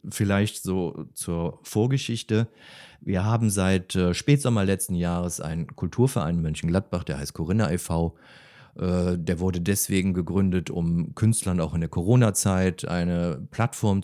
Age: 40-59